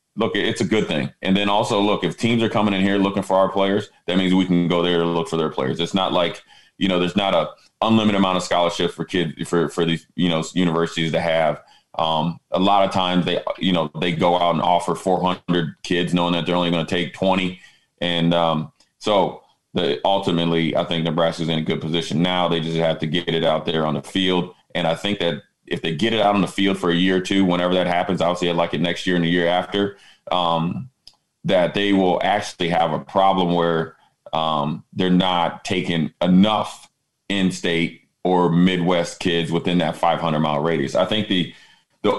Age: 30-49